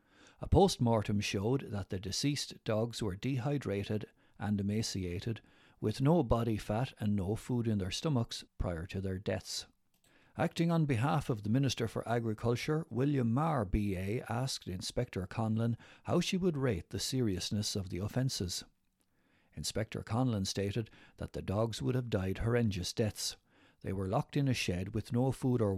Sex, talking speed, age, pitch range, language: male, 160 wpm, 60-79, 100-125 Hz, English